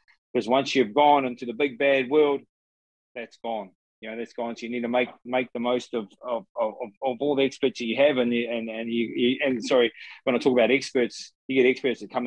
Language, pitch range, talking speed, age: English, 115-130 Hz, 245 wpm, 20-39